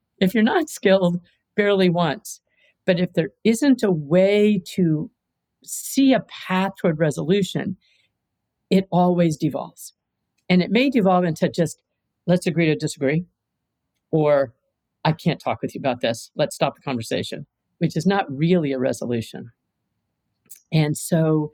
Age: 50-69